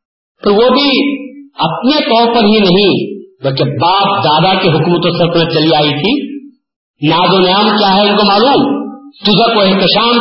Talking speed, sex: 170 wpm, male